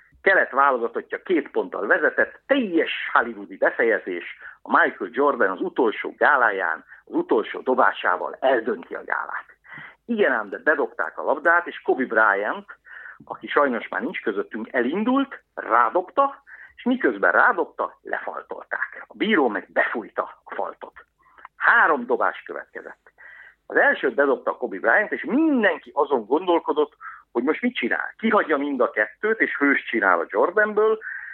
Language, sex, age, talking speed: Hungarian, male, 50-69, 140 wpm